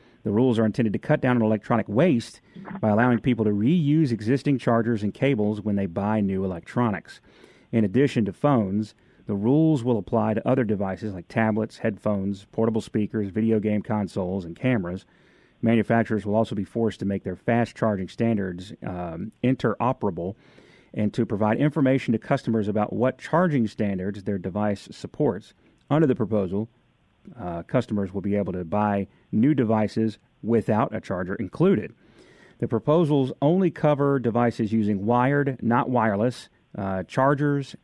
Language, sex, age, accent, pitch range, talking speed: English, male, 40-59, American, 100-120 Hz, 155 wpm